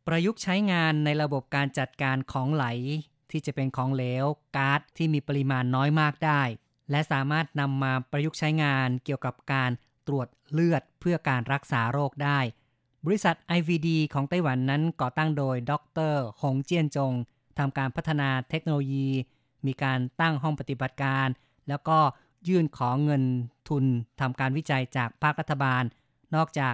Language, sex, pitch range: Thai, female, 130-155 Hz